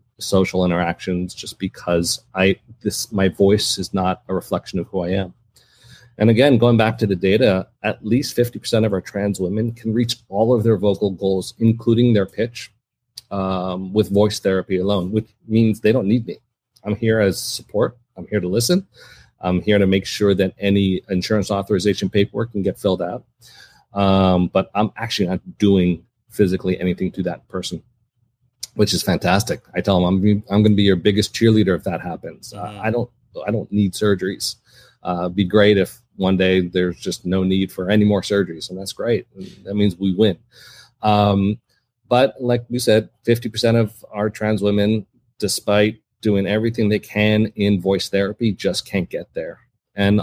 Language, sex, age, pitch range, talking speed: English, male, 40-59, 95-110 Hz, 185 wpm